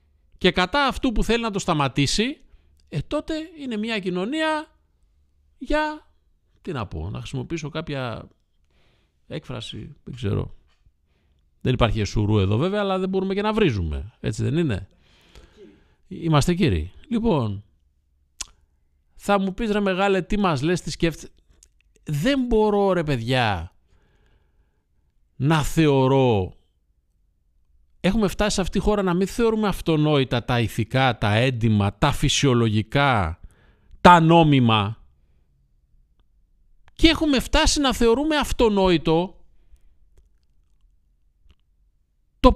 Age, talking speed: 50-69, 115 wpm